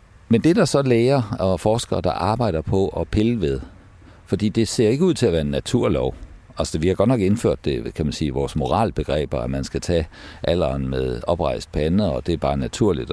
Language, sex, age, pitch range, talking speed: Danish, male, 60-79, 75-100 Hz, 230 wpm